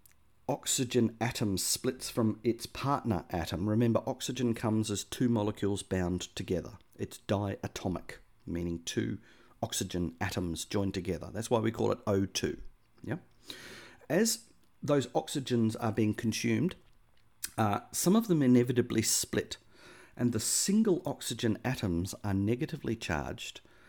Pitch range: 105-125 Hz